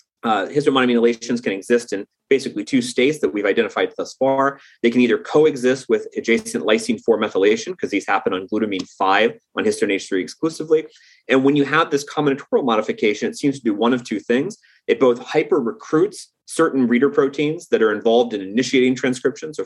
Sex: male